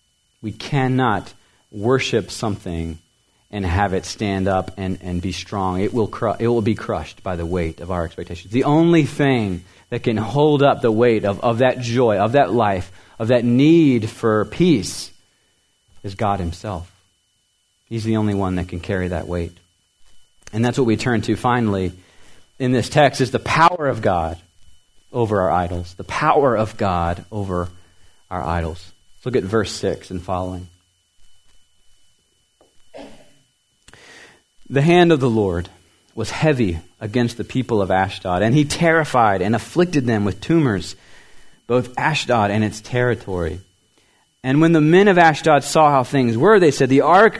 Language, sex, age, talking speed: English, male, 40-59, 165 wpm